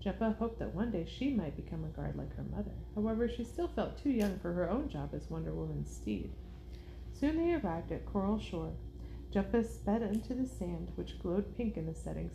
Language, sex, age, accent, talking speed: English, female, 30-49, American, 215 wpm